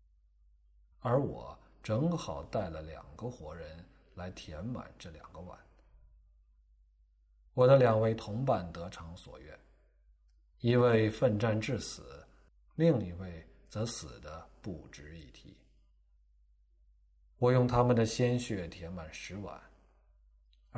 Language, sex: Chinese, male